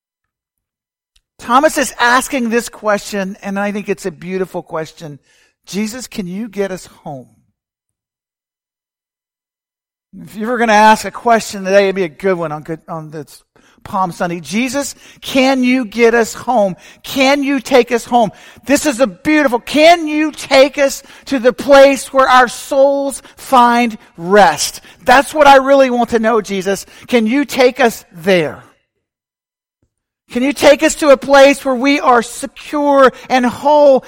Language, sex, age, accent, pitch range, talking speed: English, male, 50-69, American, 200-270 Hz, 160 wpm